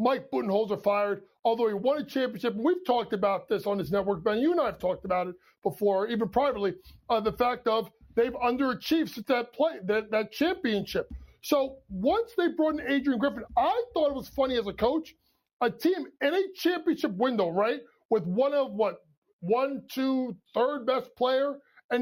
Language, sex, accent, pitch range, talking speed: English, male, American, 220-315 Hz, 190 wpm